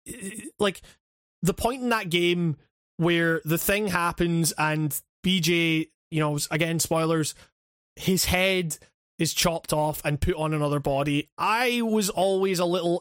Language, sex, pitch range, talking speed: English, male, 160-185 Hz, 145 wpm